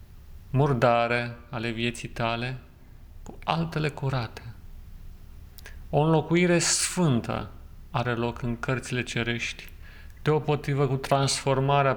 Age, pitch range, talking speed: 40-59, 85-135 Hz, 90 wpm